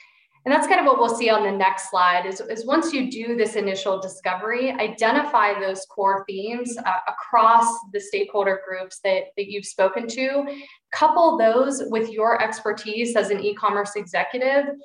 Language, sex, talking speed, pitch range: English, female, 170 wpm, 190-225 Hz